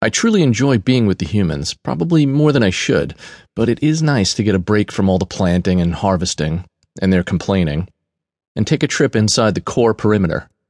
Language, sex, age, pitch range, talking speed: English, male, 40-59, 95-125 Hz, 210 wpm